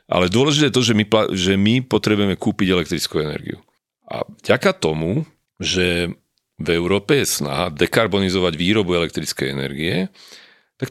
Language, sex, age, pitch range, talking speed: Slovak, male, 40-59, 85-110 Hz, 130 wpm